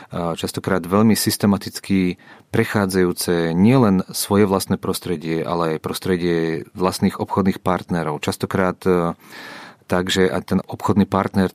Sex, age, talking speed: male, 30-49, 110 wpm